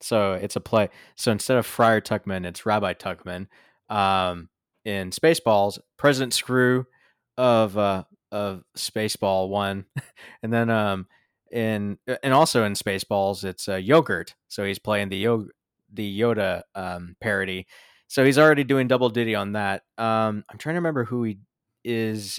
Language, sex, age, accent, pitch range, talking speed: English, male, 20-39, American, 100-125 Hz, 155 wpm